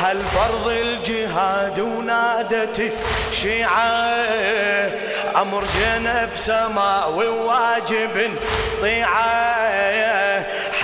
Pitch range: 220-260 Hz